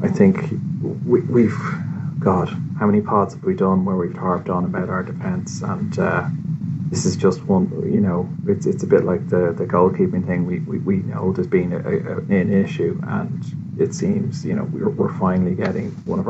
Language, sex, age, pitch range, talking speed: English, male, 30-49, 130-190 Hz, 200 wpm